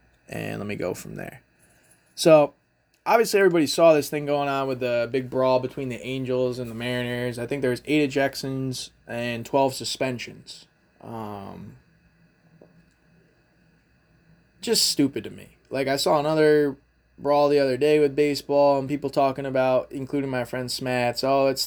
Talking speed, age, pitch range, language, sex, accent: 160 wpm, 20-39, 125-150 Hz, English, male, American